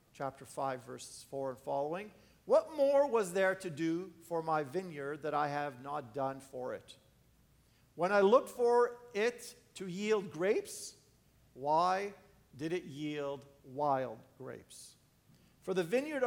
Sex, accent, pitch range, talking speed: male, American, 135-180 Hz, 145 wpm